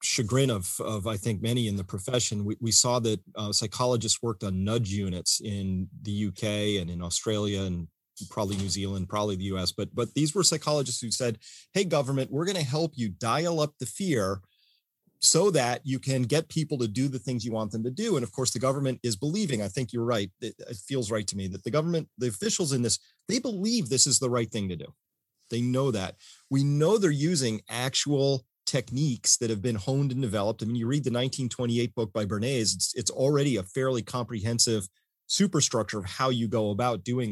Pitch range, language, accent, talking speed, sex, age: 110-135 Hz, English, American, 215 wpm, male, 30-49